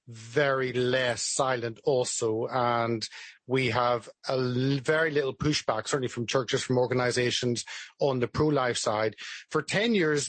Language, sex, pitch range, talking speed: English, male, 130-155 Hz, 140 wpm